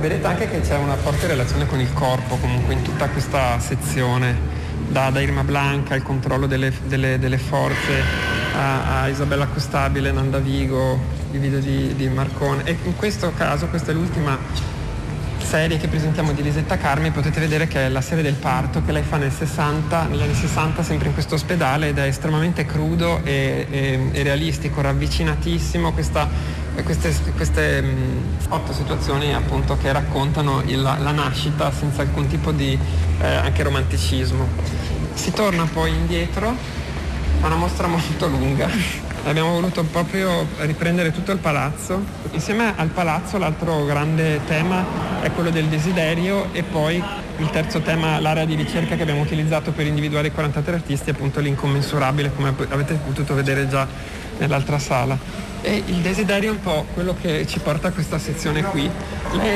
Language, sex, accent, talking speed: Italian, male, native, 165 wpm